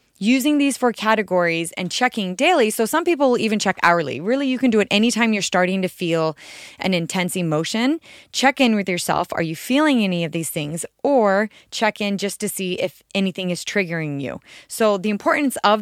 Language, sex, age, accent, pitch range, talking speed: English, female, 20-39, American, 175-230 Hz, 200 wpm